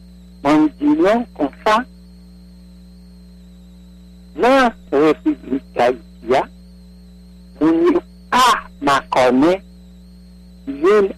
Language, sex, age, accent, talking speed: English, male, 50-69, American, 75 wpm